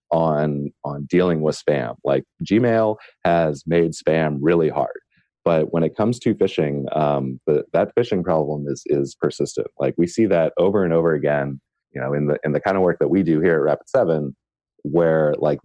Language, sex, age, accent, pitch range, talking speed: English, male, 30-49, American, 70-85 Hz, 195 wpm